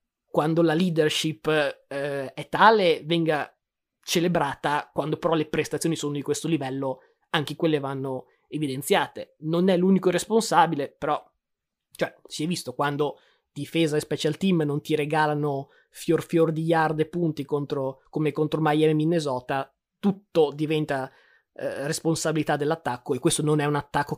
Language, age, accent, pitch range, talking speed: Italian, 20-39, native, 145-170 Hz, 145 wpm